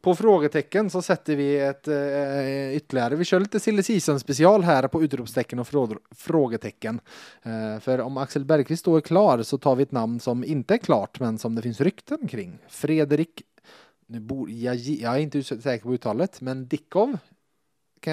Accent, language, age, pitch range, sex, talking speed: Norwegian, Swedish, 20-39, 120-160 Hz, male, 180 wpm